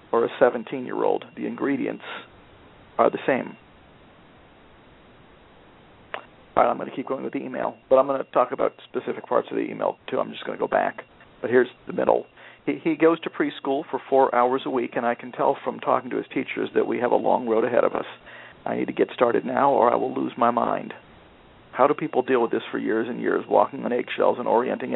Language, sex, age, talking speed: English, male, 50-69, 230 wpm